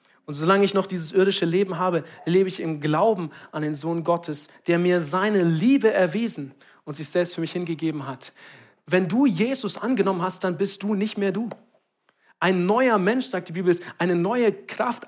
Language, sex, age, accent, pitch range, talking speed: German, male, 40-59, German, 175-220 Hz, 190 wpm